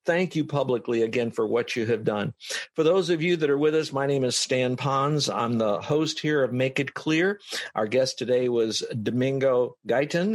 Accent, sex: American, male